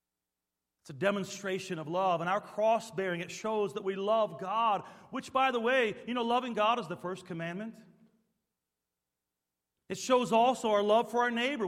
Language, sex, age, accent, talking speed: English, male, 40-59, American, 175 wpm